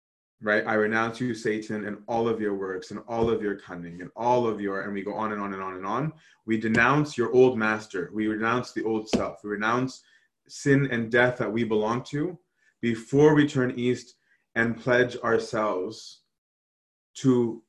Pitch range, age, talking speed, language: 105-125 Hz, 30-49, 190 wpm, English